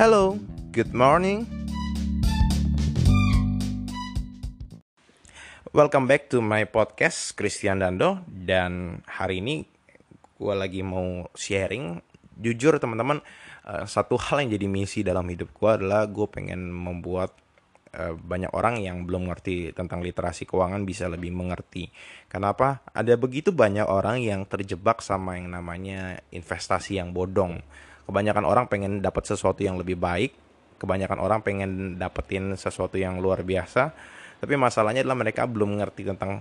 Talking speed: 130 wpm